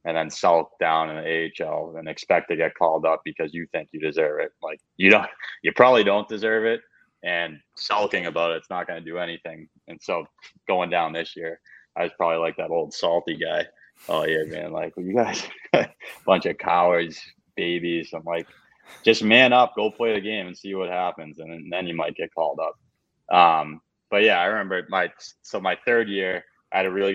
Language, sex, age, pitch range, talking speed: English, male, 20-39, 80-90 Hz, 210 wpm